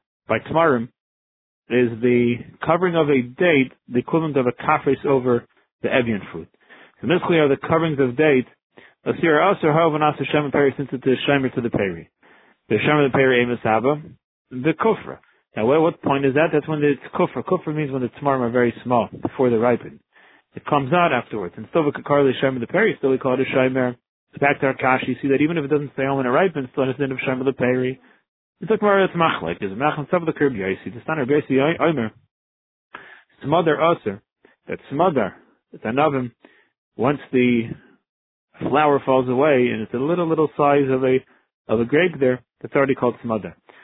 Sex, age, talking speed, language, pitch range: male, 40-59, 170 wpm, English, 125-155 Hz